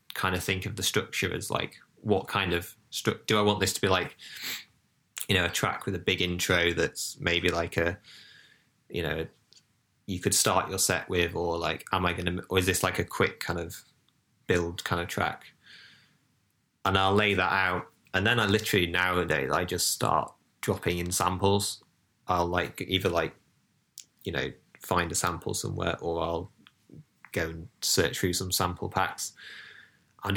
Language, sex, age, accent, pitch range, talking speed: English, male, 20-39, British, 90-100 Hz, 180 wpm